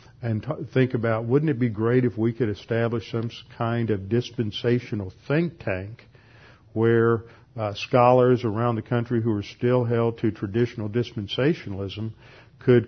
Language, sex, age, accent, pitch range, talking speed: English, male, 50-69, American, 110-125 Hz, 145 wpm